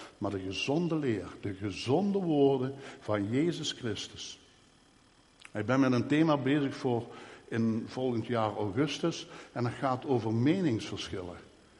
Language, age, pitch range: Dutch, 60-79, 110-145 Hz